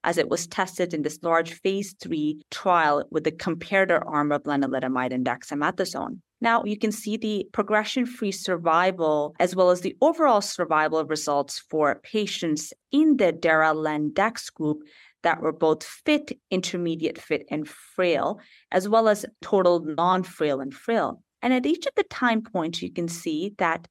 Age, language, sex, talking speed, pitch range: 30-49, English, female, 165 wpm, 155-230 Hz